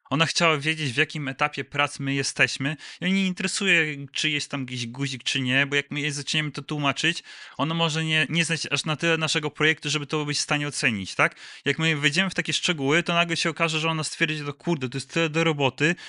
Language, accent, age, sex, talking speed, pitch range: Polish, native, 20-39, male, 235 wpm, 130-160 Hz